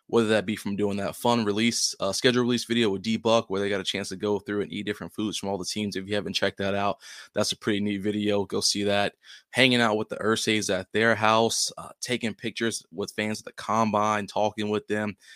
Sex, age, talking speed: male, 20-39, 245 wpm